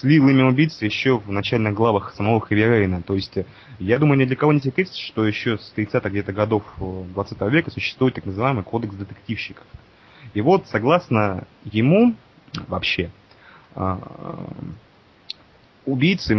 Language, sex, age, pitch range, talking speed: Russian, male, 20-39, 100-135 Hz, 140 wpm